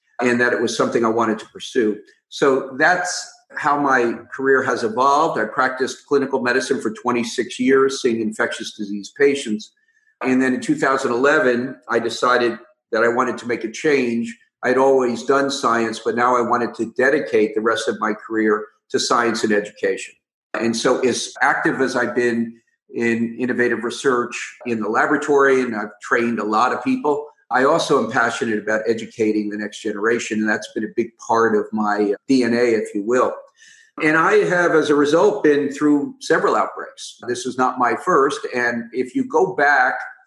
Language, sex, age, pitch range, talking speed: English, male, 50-69, 115-140 Hz, 180 wpm